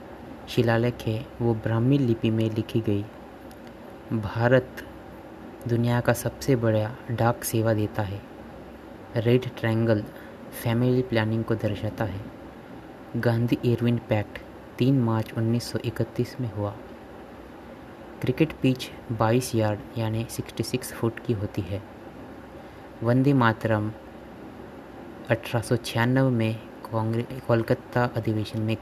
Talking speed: 105 wpm